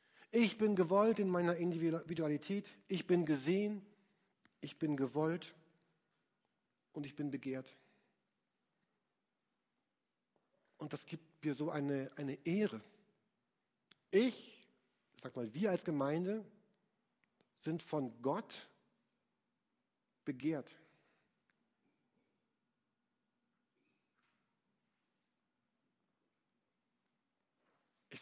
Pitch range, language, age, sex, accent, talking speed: 155-190 Hz, German, 50-69, male, German, 75 wpm